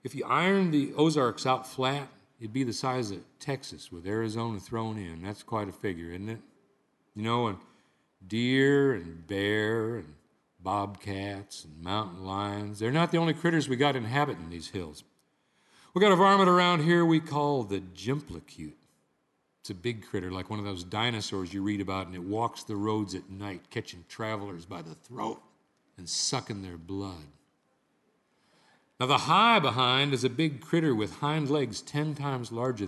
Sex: male